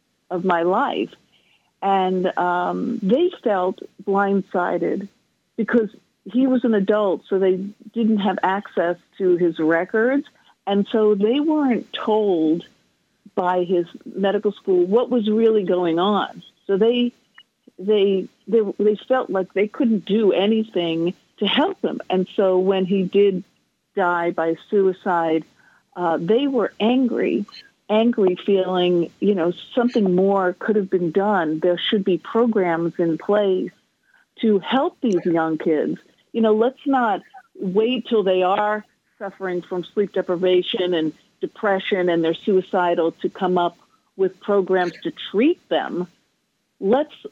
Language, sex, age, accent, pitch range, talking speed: English, female, 50-69, American, 180-225 Hz, 135 wpm